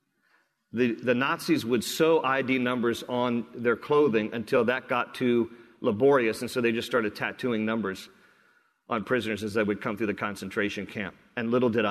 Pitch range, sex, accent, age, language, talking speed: 110-135 Hz, male, American, 40-59, English, 175 wpm